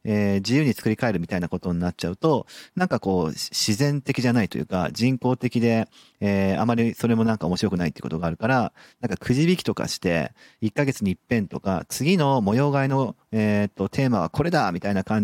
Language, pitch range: Japanese, 100-145 Hz